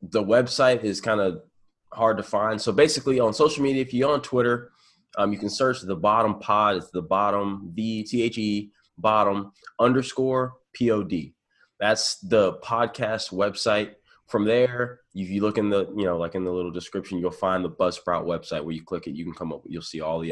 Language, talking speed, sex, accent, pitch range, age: English, 195 wpm, male, American, 85-110 Hz, 20-39